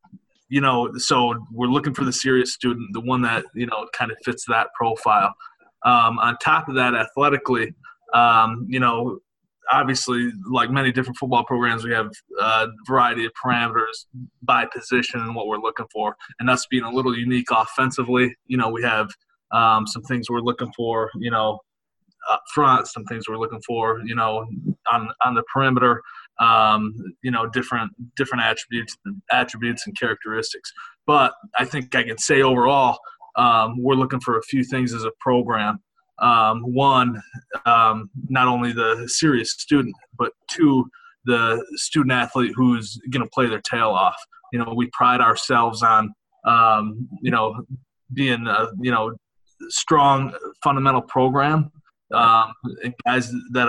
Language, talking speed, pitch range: English, 160 wpm, 115-130 Hz